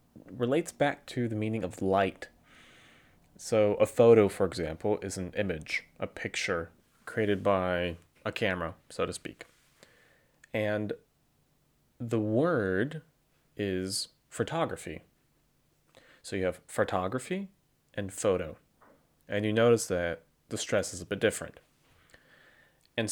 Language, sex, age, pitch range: Japanese, male, 30-49, 95-135 Hz